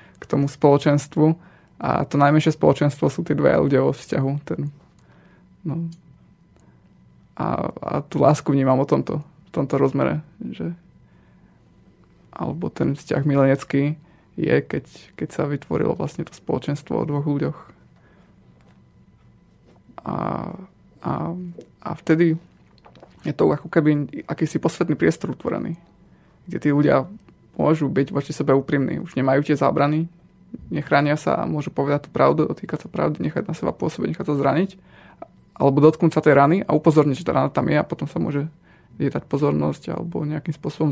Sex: male